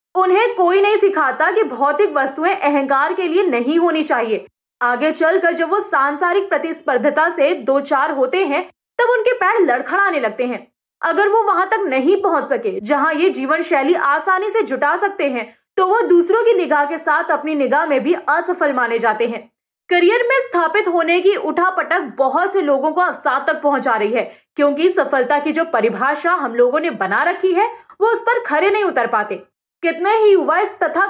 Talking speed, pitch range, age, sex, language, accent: 190 wpm, 275-380 Hz, 20-39, female, Hindi, native